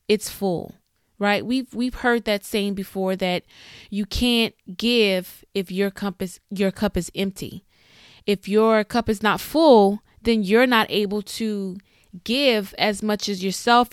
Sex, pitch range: female, 190-230 Hz